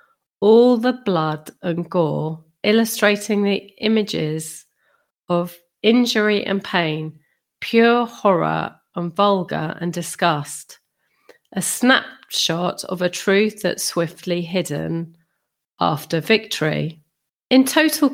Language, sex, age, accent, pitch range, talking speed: English, female, 40-59, British, 170-240 Hz, 100 wpm